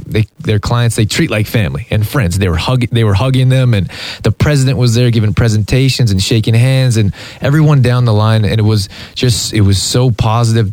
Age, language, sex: 20-39, English, male